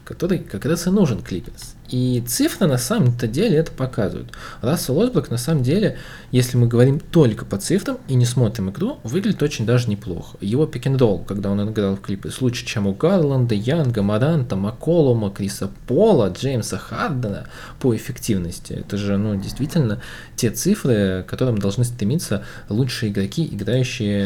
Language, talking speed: Russian, 160 wpm